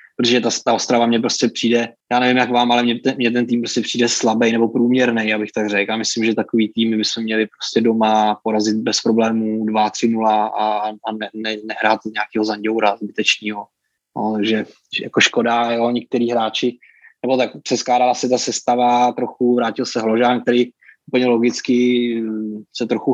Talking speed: 170 wpm